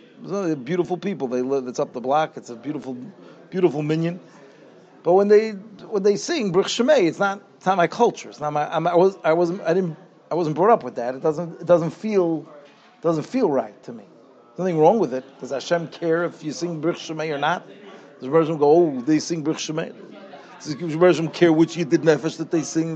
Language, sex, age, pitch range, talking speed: English, male, 40-59, 150-190 Hz, 225 wpm